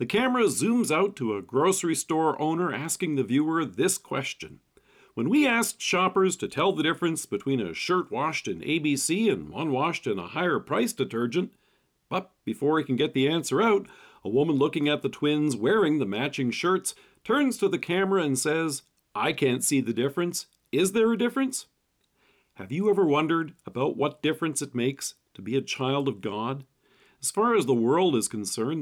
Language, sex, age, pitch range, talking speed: English, male, 40-59, 135-180 Hz, 190 wpm